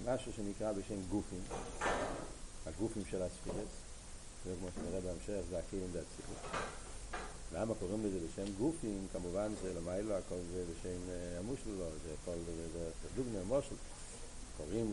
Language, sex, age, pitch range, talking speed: Hebrew, male, 60-79, 90-120 Hz, 115 wpm